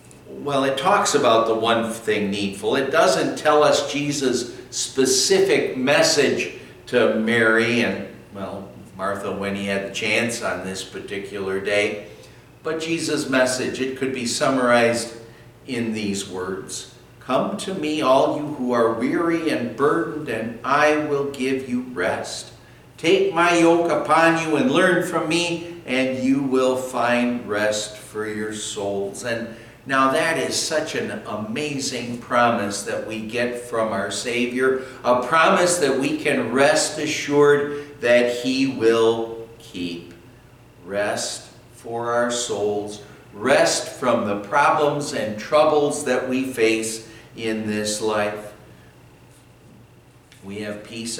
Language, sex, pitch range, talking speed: English, male, 105-135 Hz, 135 wpm